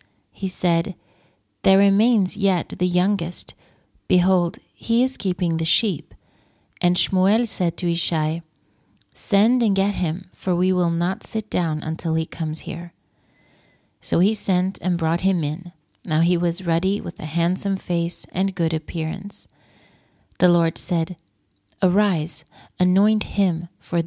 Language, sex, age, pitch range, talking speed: English, female, 30-49, 165-195 Hz, 140 wpm